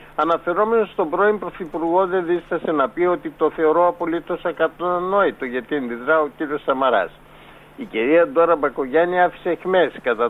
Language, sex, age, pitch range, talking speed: Greek, male, 60-79, 140-175 Hz, 145 wpm